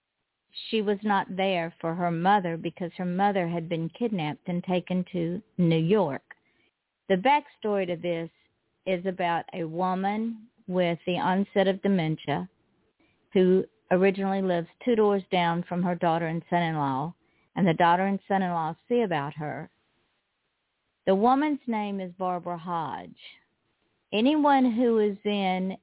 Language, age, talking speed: English, 50-69, 140 wpm